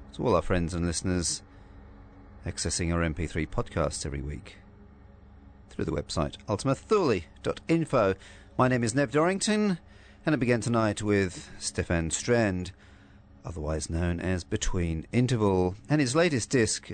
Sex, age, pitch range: male, 40-59, 90-105 Hz